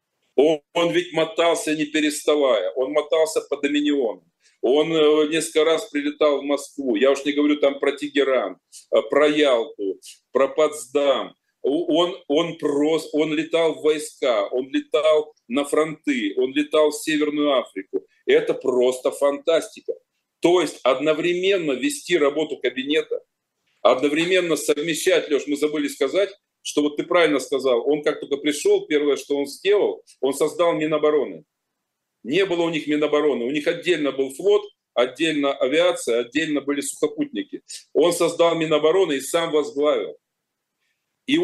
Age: 40-59